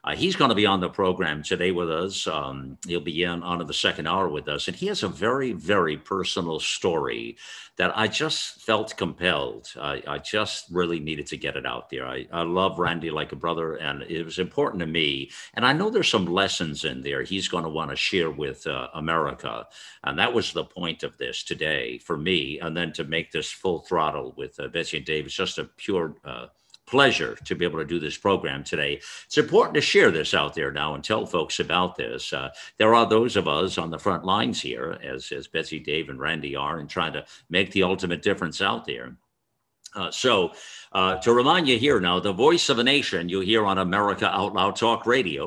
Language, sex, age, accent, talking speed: English, male, 50-69, American, 225 wpm